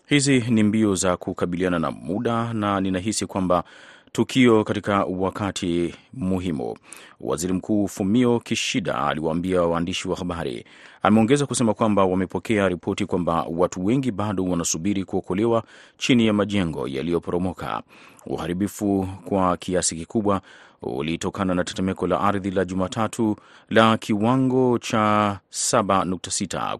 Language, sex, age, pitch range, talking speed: Swahili, male, 30-49, 90-110 Hz, 115 wpm